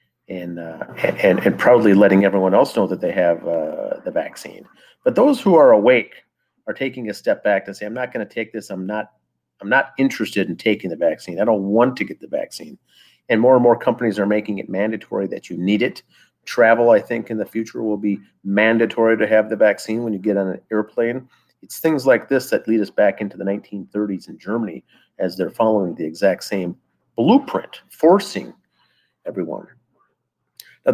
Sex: male